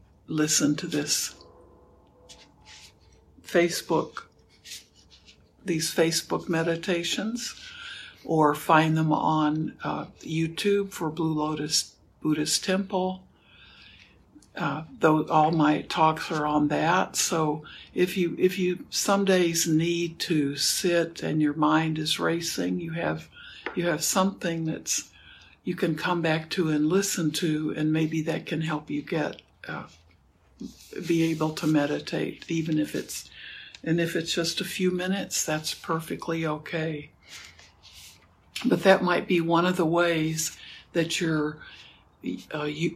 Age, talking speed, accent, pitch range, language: 60-79, 130 wpm, American, 150-175 Hz, English